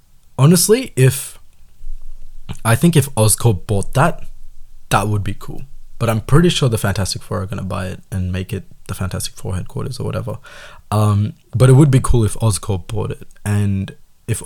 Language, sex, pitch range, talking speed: Tamil, male, 100-125 Hz, 185 wpm